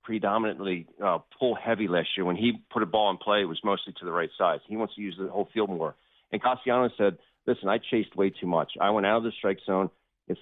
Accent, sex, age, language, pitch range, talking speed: American, male, 40-59, English, 95-125 Hz, 260 wpm